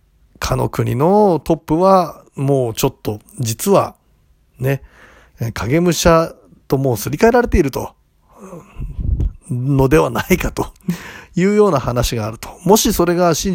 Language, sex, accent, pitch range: Japanese, male, native, 120-175 Hz